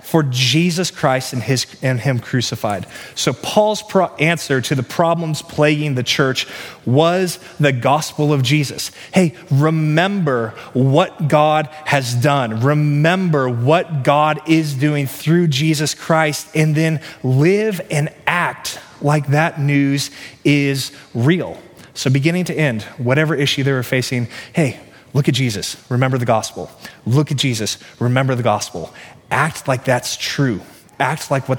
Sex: male